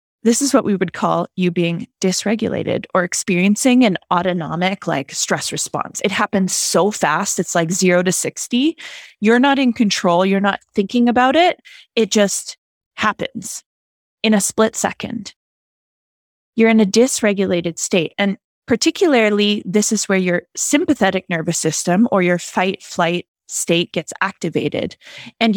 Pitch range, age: 175-220 Hz, 20-39